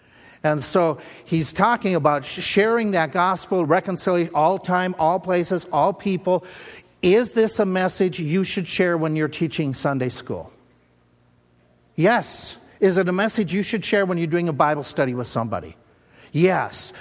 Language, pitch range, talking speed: English, 150-195 Hz, 155 wpm